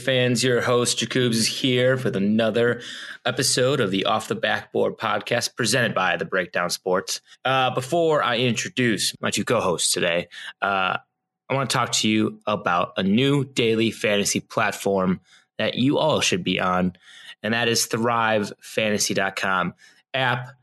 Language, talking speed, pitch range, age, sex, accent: English, 150 wpm, 105-130 Hz, 20-39, male, American